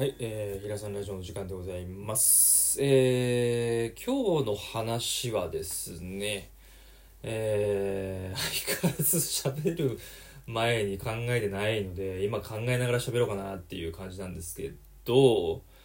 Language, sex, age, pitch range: Japanese, male, 20-39, 105-150 Hz